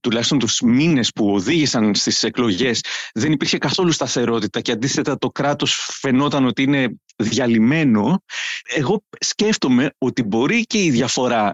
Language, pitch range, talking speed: Greek, 125-160 Hz, 135 wpm